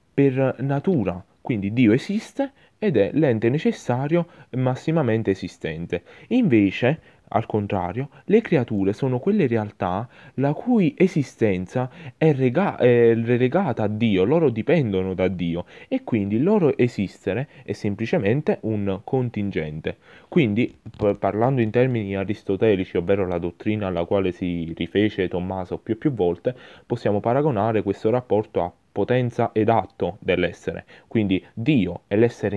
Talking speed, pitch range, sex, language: 130 wpm, 100-130 Hz, male, Italian